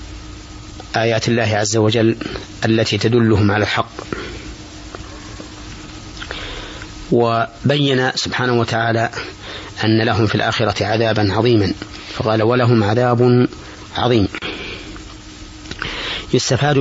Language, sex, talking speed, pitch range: Arabic, male, 80 wpm, 105-120 Hz